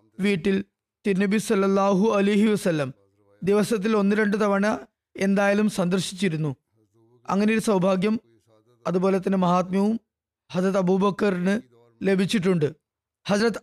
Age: 20-39